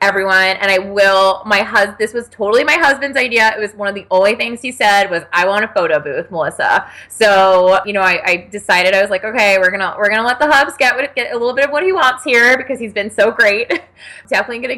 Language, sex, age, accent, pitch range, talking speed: English, female, 20-39, American, 195-245 Hz, 250 wpm